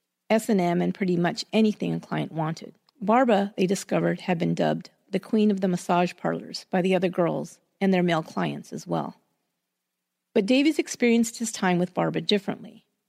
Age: 40-59